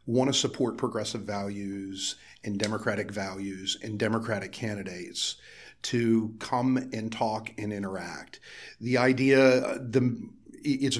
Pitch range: 100-120 Hz